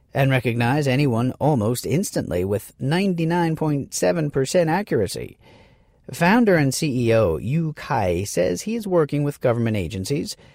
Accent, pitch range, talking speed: American, 110-150 Hz, 115 wpm